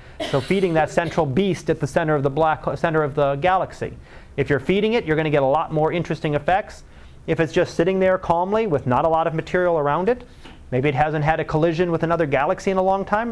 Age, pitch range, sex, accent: 30-49, 145-185 Hz, male, American